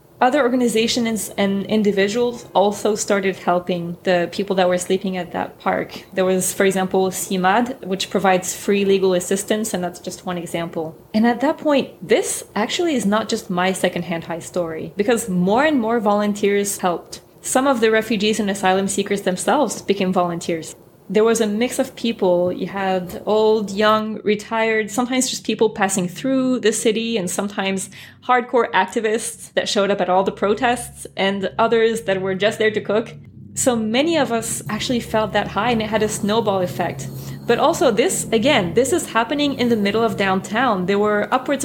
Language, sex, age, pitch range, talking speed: English, female, 20-39, 190-230 Hz, 180 wpm